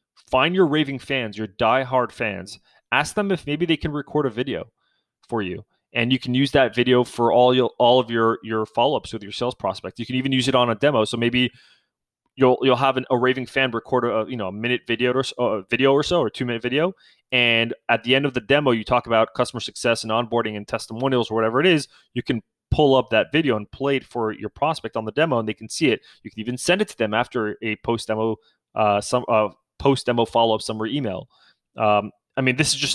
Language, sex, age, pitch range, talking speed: English, male, 20-39, 115-135 Hz, 245 wpm